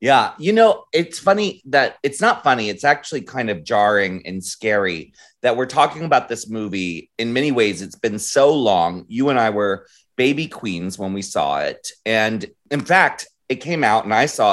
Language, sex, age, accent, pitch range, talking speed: English, male, 30-49, American, 95-155 Hz, 200 wpm